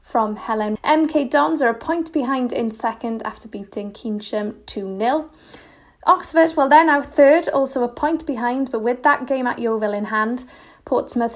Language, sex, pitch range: English, female, 215-275 Hz